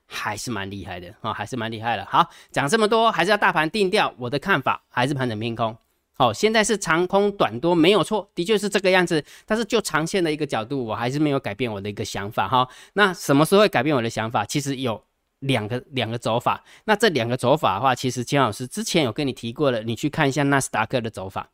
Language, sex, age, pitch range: Chinese, male, 20-39, 115-155 Hz